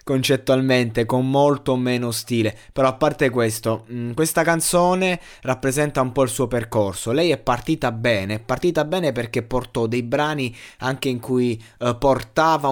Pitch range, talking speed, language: 120-160 Hz, 160 wpm, Italian